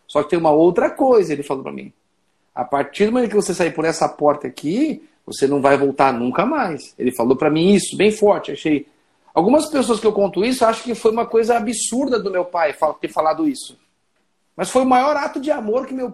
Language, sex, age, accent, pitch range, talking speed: Portuguese, male, 50-69, Brazilian, 185-240 Hz, 230 wpm